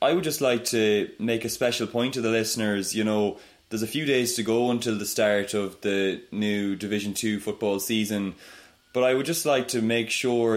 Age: 20-39